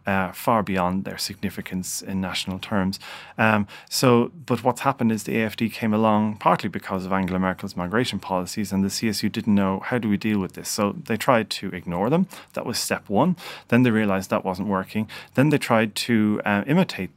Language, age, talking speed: English, 30-49, 205 wpm